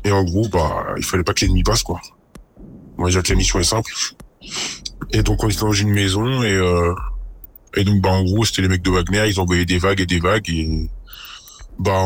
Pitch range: 85-100 Hz